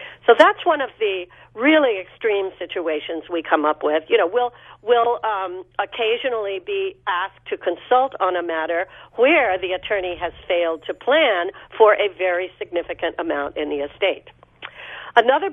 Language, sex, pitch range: English, female, 175-265 Hz